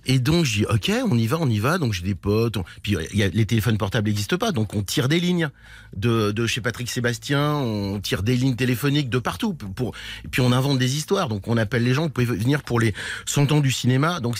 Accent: French